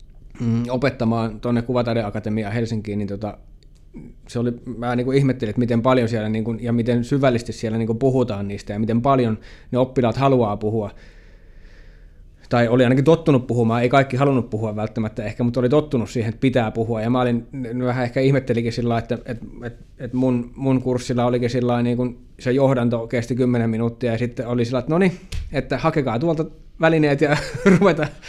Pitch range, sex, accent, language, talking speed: 115-140 Hz, male, native, Finnish, 180 wpm